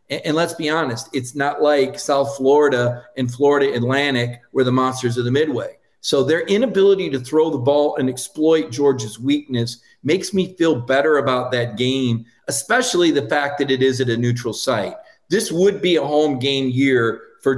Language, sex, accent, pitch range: English, male, American, 130-160 Hz